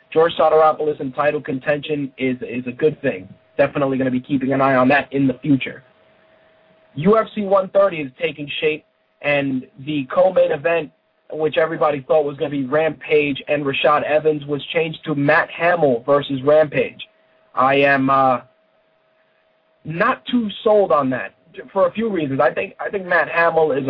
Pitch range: 140-165 Hz